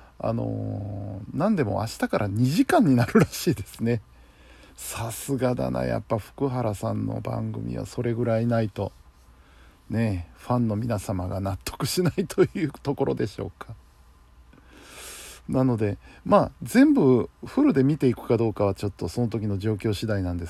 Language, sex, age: Japanese, male, 50-69